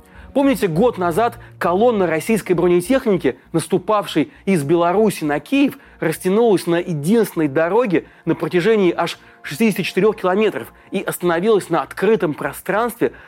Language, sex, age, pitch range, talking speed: Russian, male, 30-49, 155-205 Hz, 115 wpm